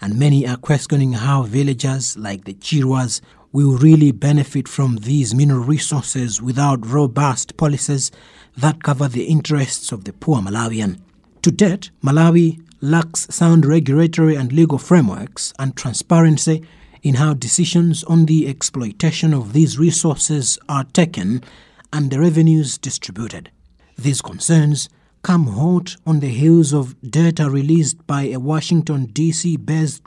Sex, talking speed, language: male, 135 wpm, English